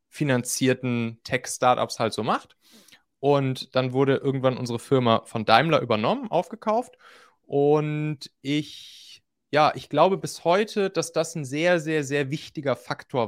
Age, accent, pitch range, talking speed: 30-49, German, 115-155 Hz, 135 wpm